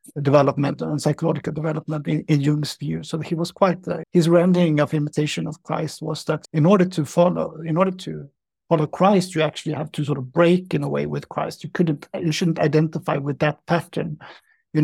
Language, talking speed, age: English, 205 wpm, 60-79